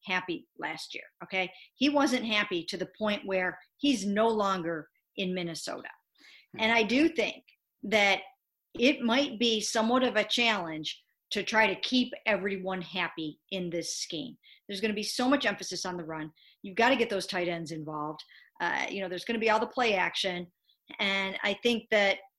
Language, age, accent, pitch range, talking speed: English, 50-69, American, 185-240 Hz, 190 wpm